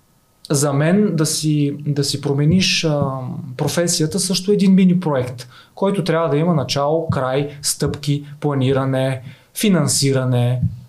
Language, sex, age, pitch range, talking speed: Bulgarian, male, 20-39, 135-165 Hz, 120 wpm